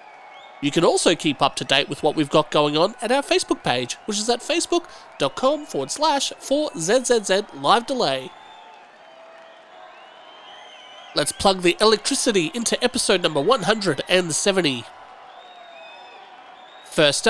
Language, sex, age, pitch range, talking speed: English, male, 30-49, 165-235 Hz, 120 wpm